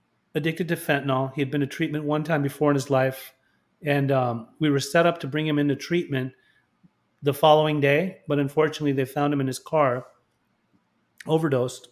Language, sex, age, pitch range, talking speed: English, male, 30-49, 130-150 Hz, 185 wpm